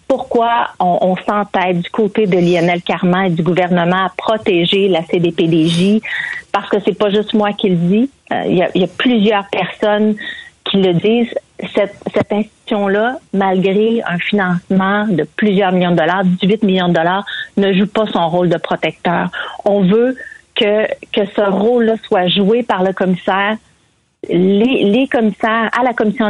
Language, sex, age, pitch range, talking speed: French, female, 40-59, 185-220 Hz, 170 wpm